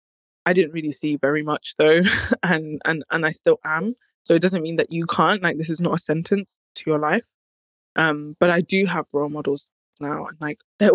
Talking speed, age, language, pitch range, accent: 220 wpm, 20-39, English, 155-190 Hz, British